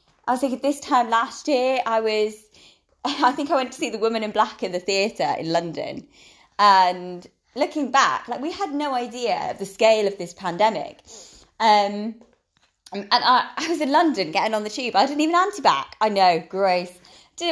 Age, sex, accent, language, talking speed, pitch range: 20-39, female, British, English, 195 wpm, 220-310 Hz